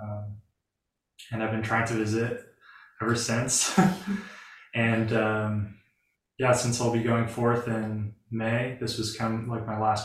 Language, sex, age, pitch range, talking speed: English, male, 20-39, 105-115 Hz, 155 wpm